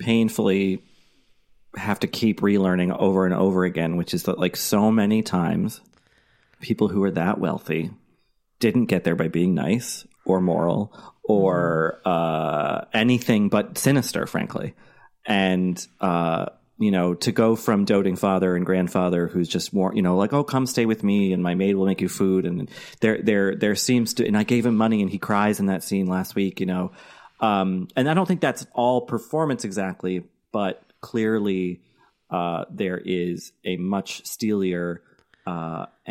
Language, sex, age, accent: English, male, 30-49, American